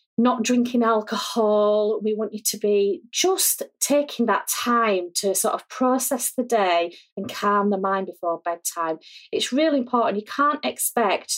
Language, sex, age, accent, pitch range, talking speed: English, female, 30-49, British, 190-240 Hz, 160 wpm